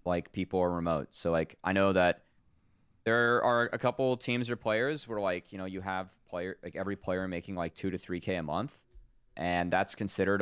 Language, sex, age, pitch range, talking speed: English, male, 20-39, 80-110 Hz, 215 wpm